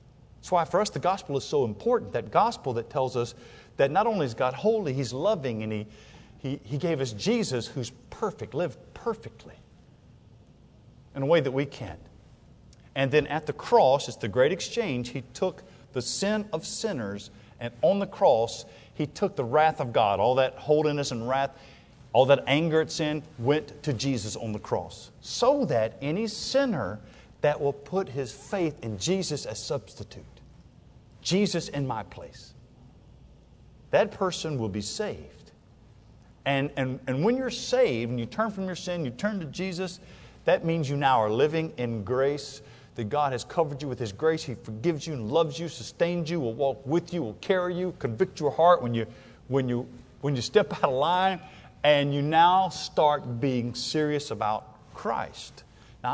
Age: 50-69